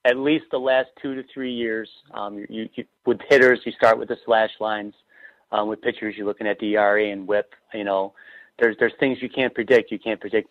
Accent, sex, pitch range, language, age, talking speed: American, male, 100-115 Hz, English, 30-49, 225 wpm